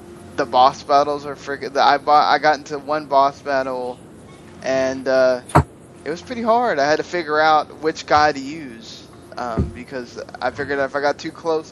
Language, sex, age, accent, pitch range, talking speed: English, male, 20-39, American, 125-145 Hz, 190 wpm